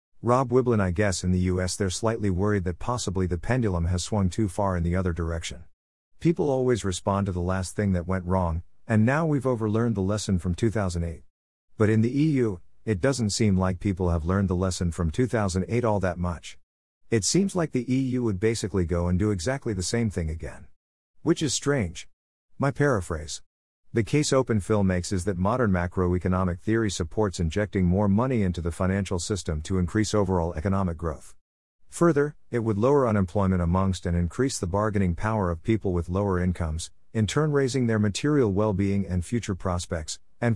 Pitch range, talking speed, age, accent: 90-115 Hz, 185 wpm, 50-69, American